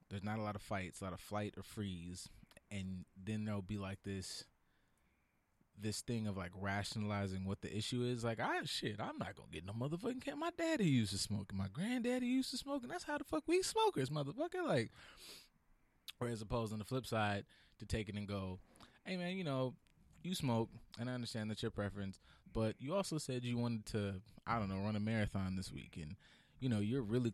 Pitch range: 100-125 Hz